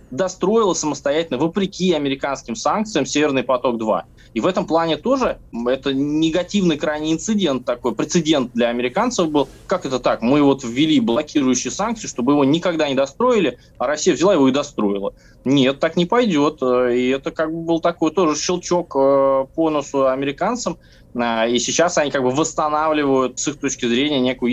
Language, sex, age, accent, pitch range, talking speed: Russian, male, 20-39, native, 125-175 Hz, 160 wpm